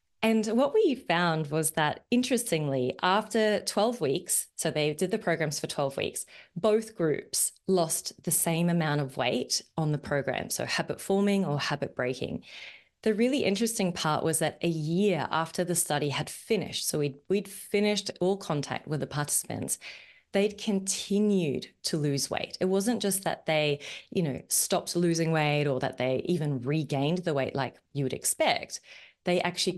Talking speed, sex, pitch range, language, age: 170 wpm, female, 150-205 Hz, English, 20-39